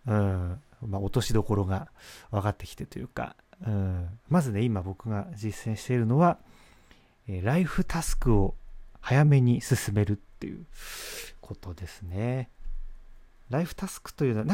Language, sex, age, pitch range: Japanese, male, 40-59, 100-145 Hz